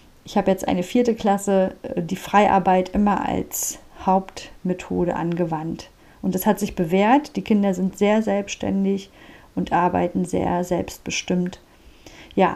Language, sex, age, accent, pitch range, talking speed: German, female, 50-69, German, 195-250 Hz, 130 wpm